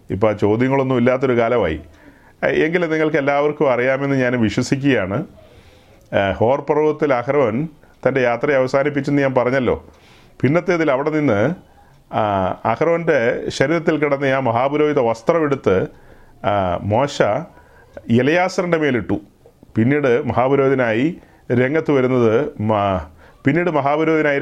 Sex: male